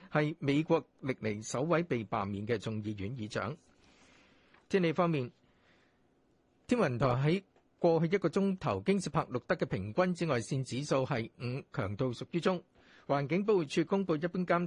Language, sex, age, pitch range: Chinese, male, 50-69, 130-170 Hz